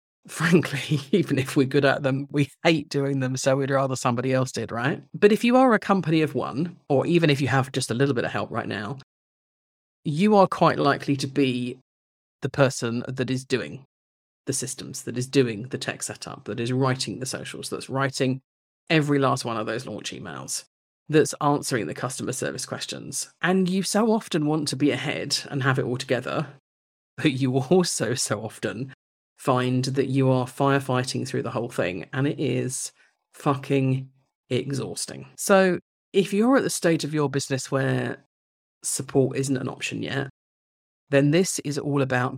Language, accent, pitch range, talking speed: English, British, 125-145 Hz, 185 wpm